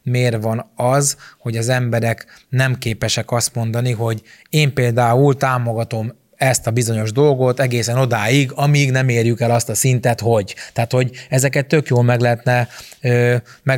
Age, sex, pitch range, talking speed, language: 20-39, male, 115-125 Hz, 150 wpm, Hungarian